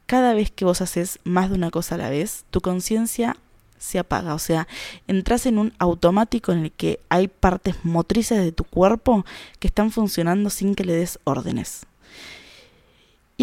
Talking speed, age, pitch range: 180 wpm, 20-39, 170-205 Hz